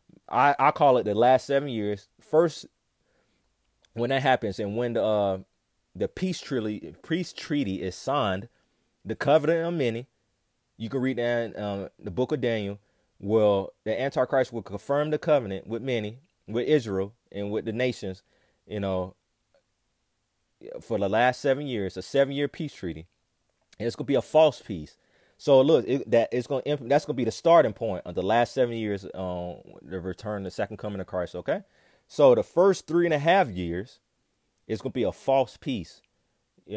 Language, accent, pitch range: English, American, 105-145 Hz